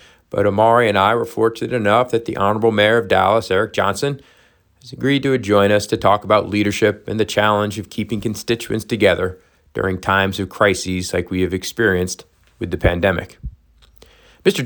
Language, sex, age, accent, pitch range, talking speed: English, male, 40-59, American, 95-115 Hz, 175 wpm